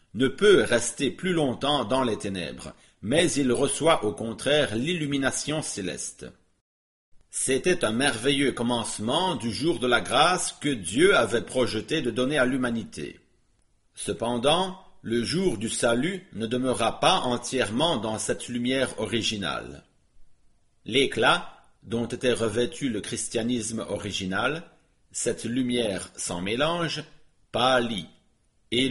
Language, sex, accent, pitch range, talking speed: English, male, French, 115-140 Hz, 120 wpm